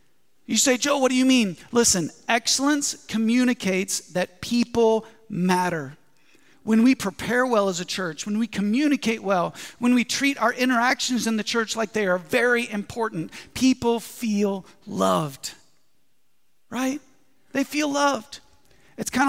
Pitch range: 190-250 Hz